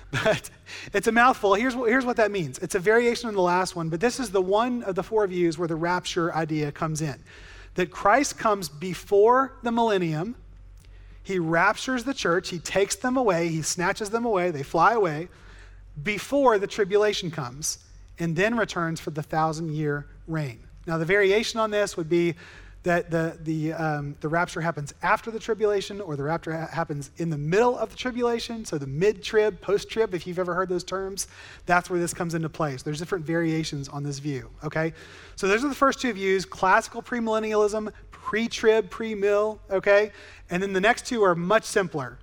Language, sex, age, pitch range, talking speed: English, male, 30-49, 155-210 Hz, 195 wpm